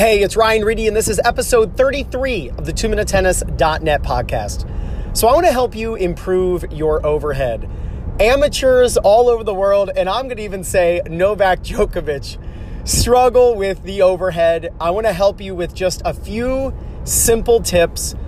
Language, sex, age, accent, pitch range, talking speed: English, male, 30-49, American, 165-220 Hz, 165 wpm